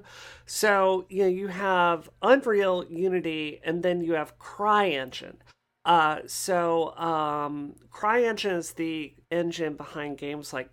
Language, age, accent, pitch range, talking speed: English, 40-59, American, 145-185 Hz, 125 wpm